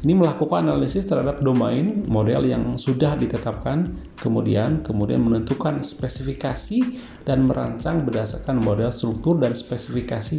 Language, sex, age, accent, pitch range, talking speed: Indonesian, male, 30-49, native, 105-130 Hz, 115 wpm